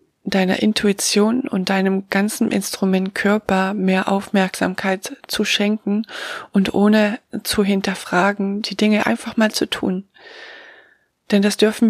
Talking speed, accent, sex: 120 wpm, German, female